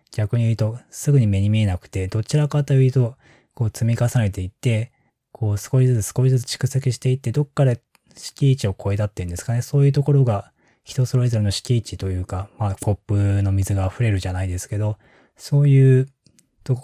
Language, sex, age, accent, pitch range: Japanese, male, 20-39, native, 95-130 Hz